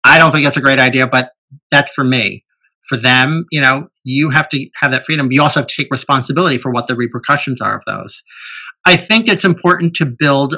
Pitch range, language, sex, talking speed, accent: 125-160 Hz, English, male, 225 wpm, American